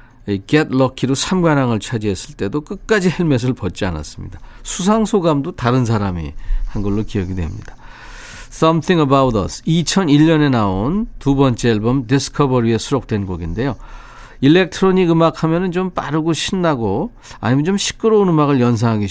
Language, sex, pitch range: Korean, male, 105-150 Hz